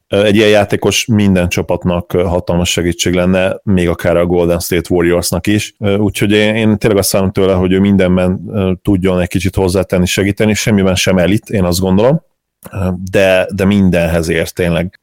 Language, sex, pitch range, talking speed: Hungarian, male, 85-95 Hz, 160 wpm